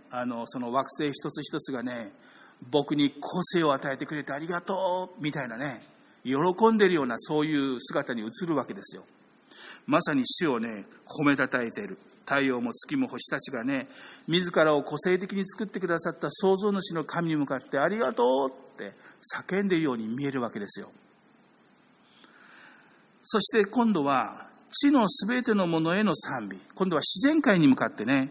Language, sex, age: Japanese, male, 50-69